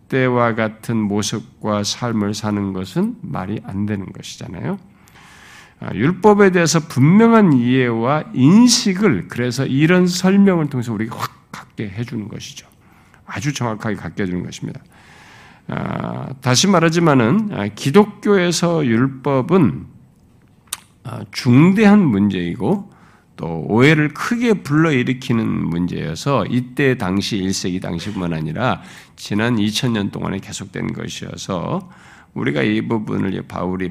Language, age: Korean, 50-69